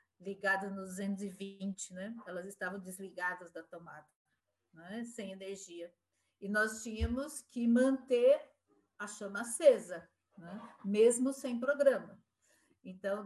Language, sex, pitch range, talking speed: Portuguese, female, 175-215 Hz, 115 wpm